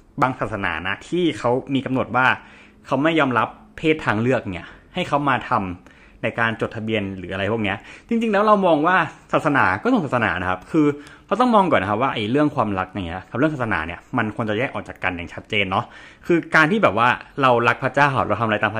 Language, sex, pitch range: Thai, male, 105-160 Hz